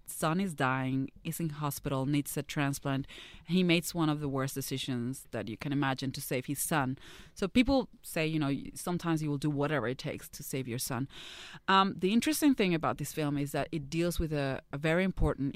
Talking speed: 215 wpm